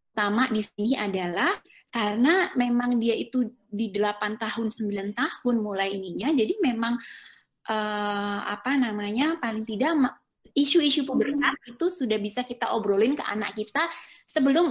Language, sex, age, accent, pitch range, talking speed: Indonesian, female, 20-39, native, 200-270 Hz, 135 wpm